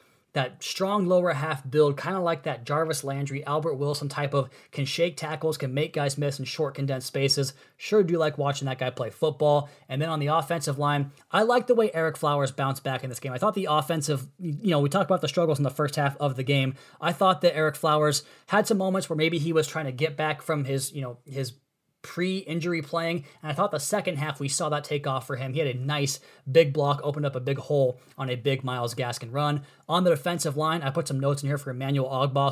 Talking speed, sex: 250 wpm, male